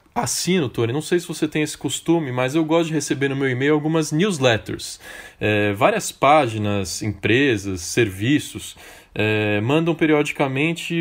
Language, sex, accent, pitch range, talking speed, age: Portuguese, male, Brazilian, 110-145 Hz, 140 wpm, 20-39